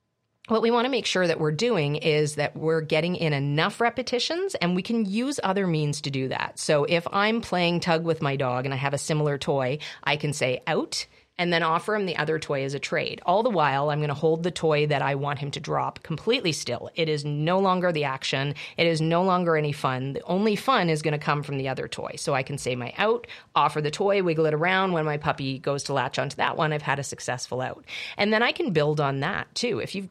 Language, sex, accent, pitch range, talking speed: English, female, American, 140-175 Hz, 255 wpm